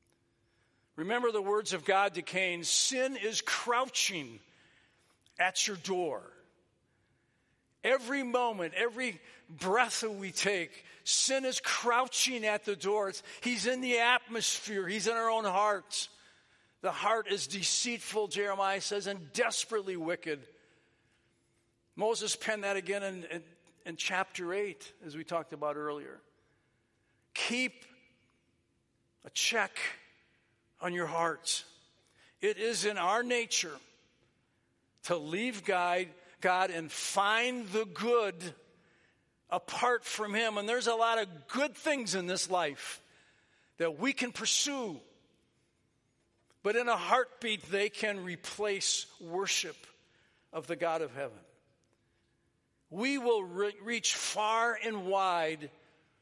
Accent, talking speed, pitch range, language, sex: American, 120 wpm, 175-235 Hz, English, male